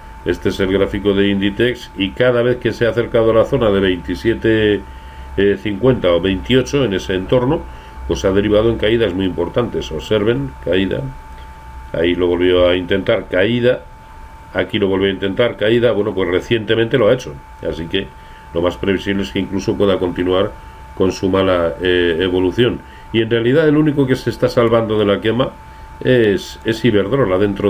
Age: 40-59